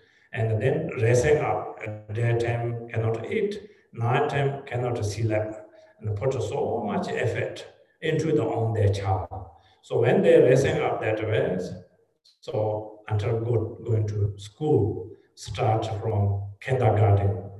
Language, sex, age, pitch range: English, male, 60-79, 105-125 Hz